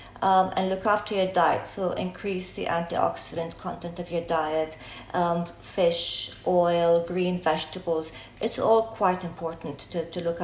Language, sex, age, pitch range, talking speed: English, female, 40-59, 165-210 Hz, 150 wpm